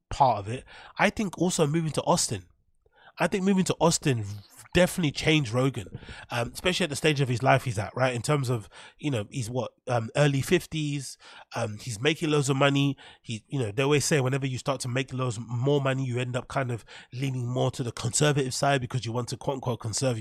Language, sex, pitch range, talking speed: English, male, 120-150 Hz, 225 wpm